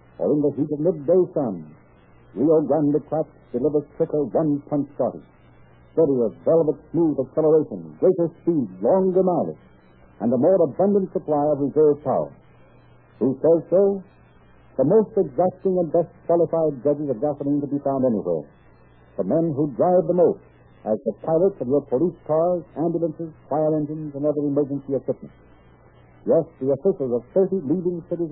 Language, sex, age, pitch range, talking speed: English, male, 60-79, 125-170 Hz, 155 wpm